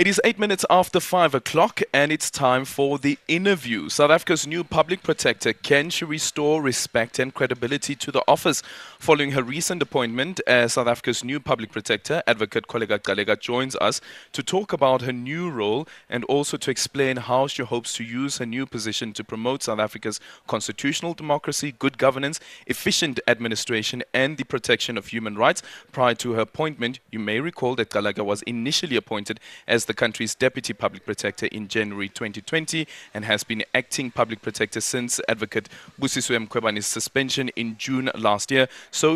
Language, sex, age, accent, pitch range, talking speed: English, male, 20-39, South African, 115-150 Hz, 175 wpm